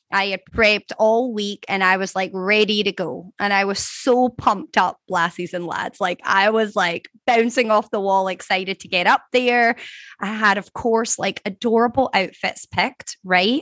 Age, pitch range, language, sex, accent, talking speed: 20-39, 195-235 Hz, English, female, American, 190 wpm